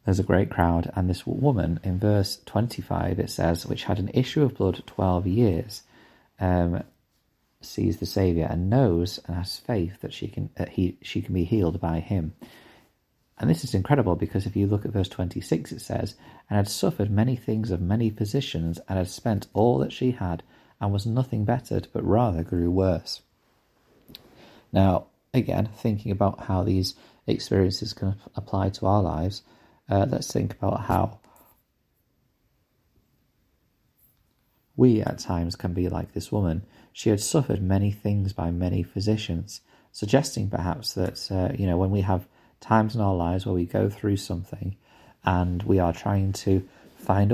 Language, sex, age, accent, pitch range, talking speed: English, male, 30-49, British, 90-110 Hz, 170 wpm